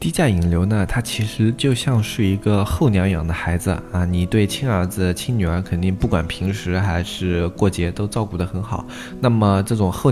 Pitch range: 85-105 Hz